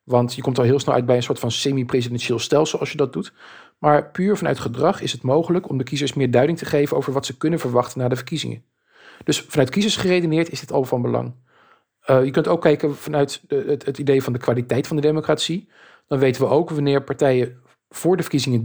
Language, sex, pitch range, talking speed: Dutch, male, 125-165 Hz, 230 wpm